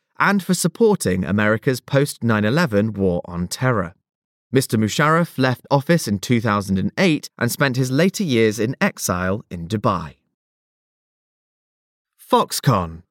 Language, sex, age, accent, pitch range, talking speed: English, male, 20-39, British, 100-165 Hz, 120 wpm